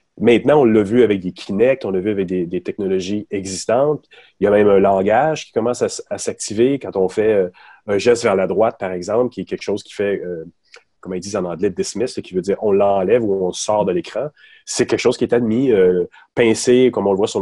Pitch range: 95-135 Hz